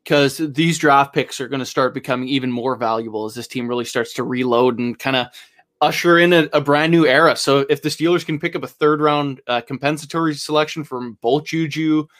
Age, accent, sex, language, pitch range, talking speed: 20-39, American, male, English, 135-165 Hz, 220 wpm